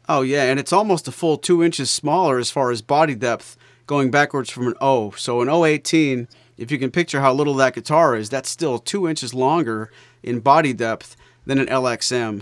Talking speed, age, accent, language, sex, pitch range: 210 wpm, 40-59, American, English, male, 120-140 Hz